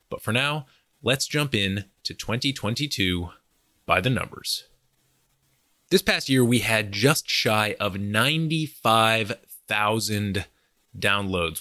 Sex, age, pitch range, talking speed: male, 20-39, 95-130 Hz, 110 wpm